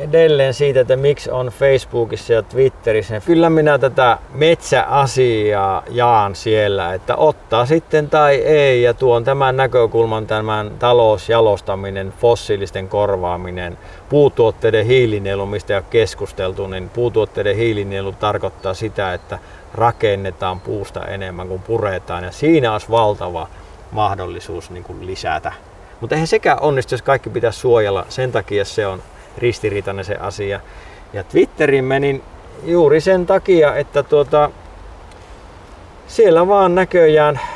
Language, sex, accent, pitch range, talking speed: Finnish, male, native, 100-145 Hz, 120 wpm